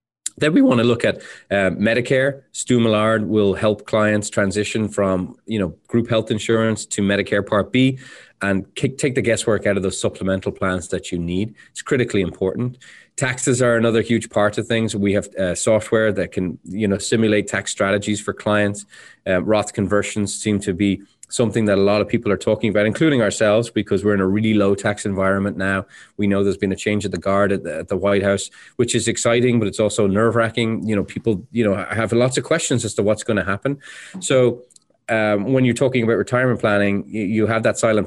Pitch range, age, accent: 100-115 Hz, 20-39, Irish